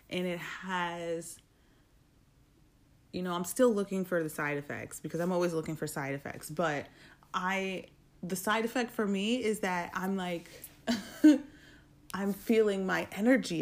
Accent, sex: American, female